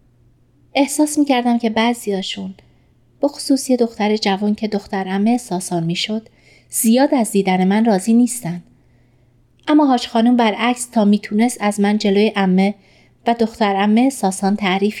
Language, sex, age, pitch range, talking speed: Persian, female, 30-49, 180-240 Hz, 140 wpm